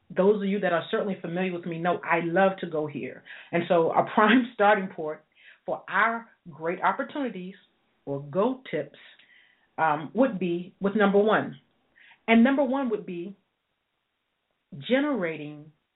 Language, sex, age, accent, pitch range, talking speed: English, female, 40-59, American, 175-220 Hz, 150 wpm